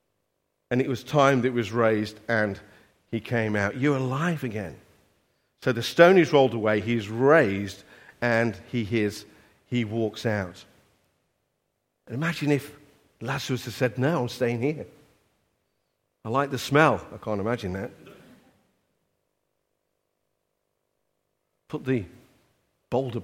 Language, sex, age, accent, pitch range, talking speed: English, male, 50-69, British, 105-130 Hz, 130 wpm